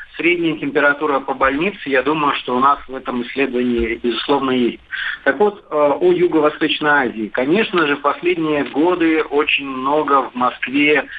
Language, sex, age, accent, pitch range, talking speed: Russian, male, 40-59, native, 130-155 Hz, 145 wpm